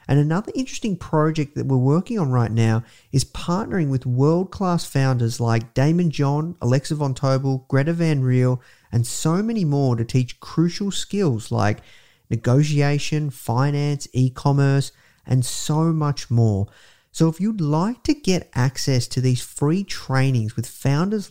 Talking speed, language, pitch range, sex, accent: 150 wpm, English, 120-155 Hz, male, Australian